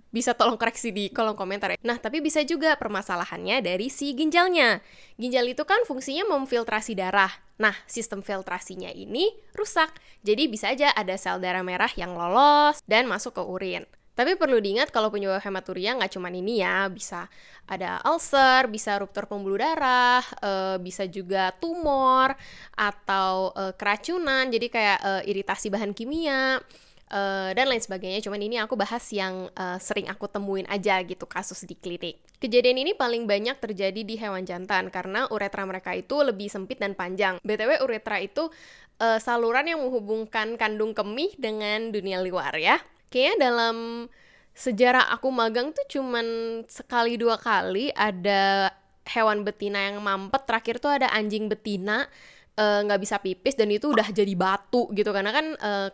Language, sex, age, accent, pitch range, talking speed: Indonesian, female, 10-29, native, 195-250 Hz, 160 wpm